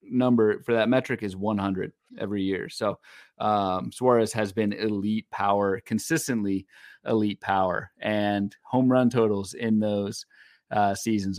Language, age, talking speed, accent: English, 30-49, 135 wpm, American